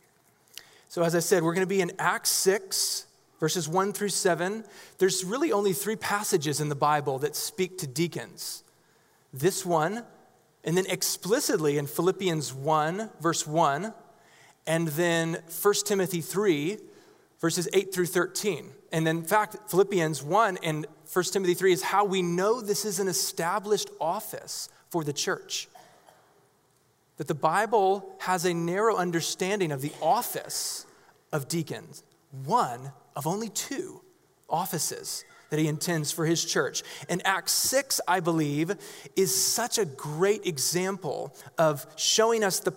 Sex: male